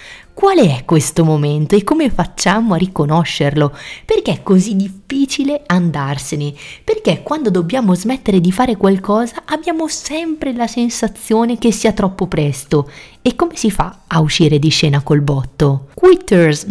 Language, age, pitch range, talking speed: Italian, 30-49, 145-205 Hz, 145 wpm